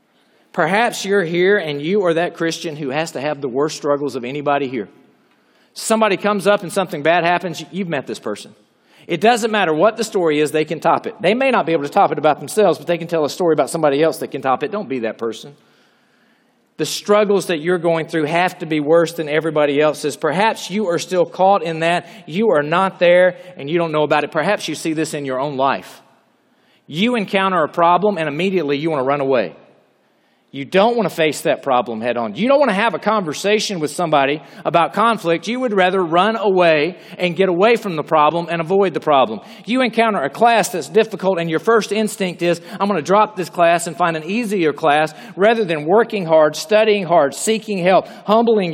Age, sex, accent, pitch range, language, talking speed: 40-59, male, American, 160-215 Hz, English, 225 wpm